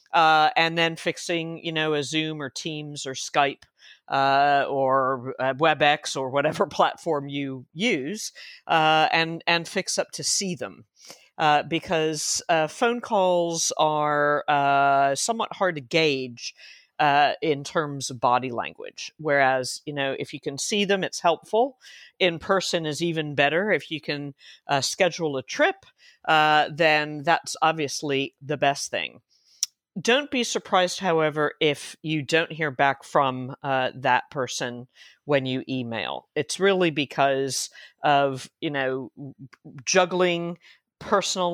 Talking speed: 145 wpm